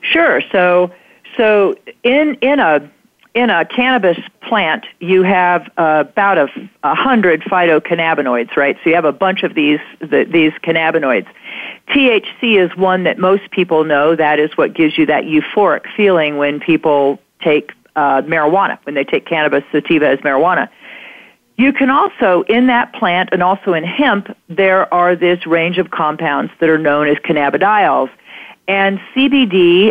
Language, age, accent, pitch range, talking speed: English, 40-59, American, 160-220 Hz, 160 wpm